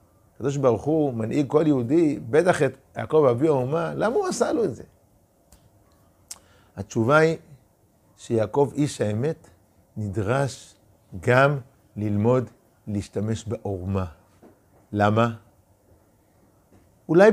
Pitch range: 105-165 Hz